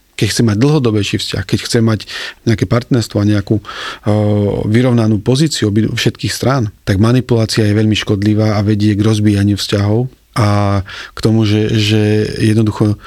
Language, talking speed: Slovak, 145 wpm